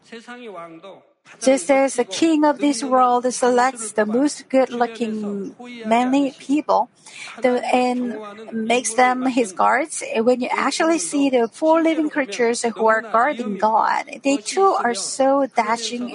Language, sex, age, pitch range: Korean, female, 50-69, 230-275 Hz